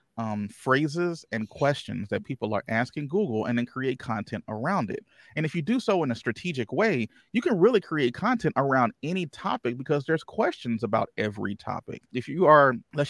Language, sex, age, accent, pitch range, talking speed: English, male, 30-49, American, 115-145 Hz, 190 wpm